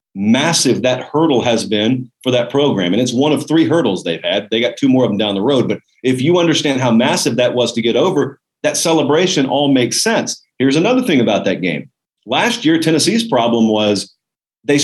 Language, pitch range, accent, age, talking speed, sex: English, 125-165 Hz, American, 40-59, 215 wpm, male